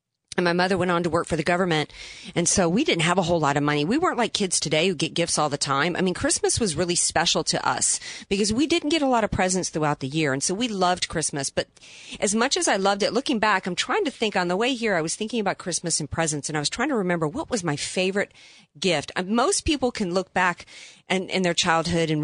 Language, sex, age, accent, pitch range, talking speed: English, female, 40-59, American, 155-205 Hz, 270 wpm